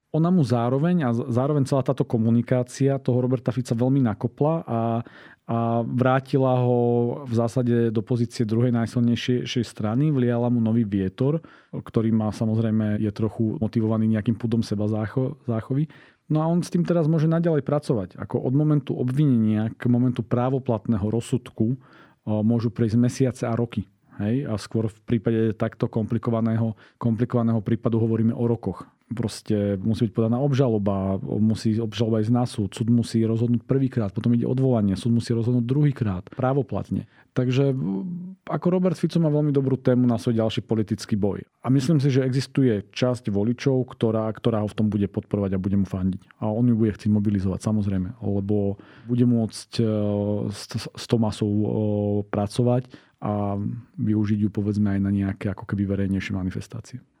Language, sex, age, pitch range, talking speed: Slovak, male, 40-59, 110-130 Hz, 160 wpm